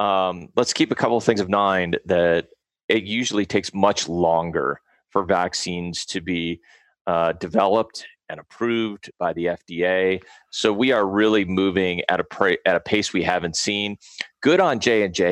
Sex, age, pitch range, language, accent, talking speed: male, 30-49, 90-110 Hz, English, American, 165 wpm